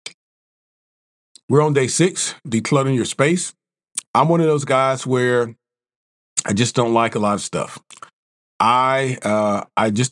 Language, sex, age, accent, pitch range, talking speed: English, male, 40-59, American, 115-150 Hz, 150 wpm